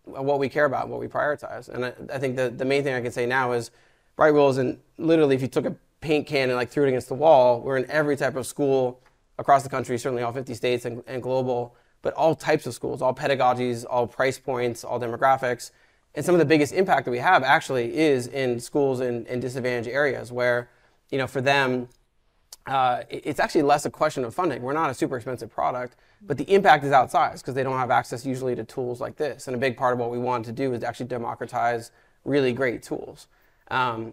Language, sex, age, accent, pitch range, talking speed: English, male, 20-39, American, 120-140 Hz, 235 wpm